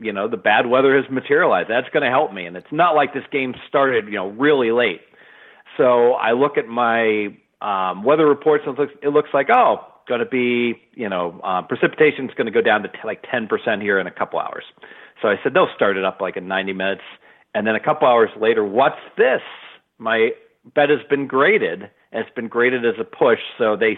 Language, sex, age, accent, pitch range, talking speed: English, male, 40-59, American, 110-150 Hz, 230 wpm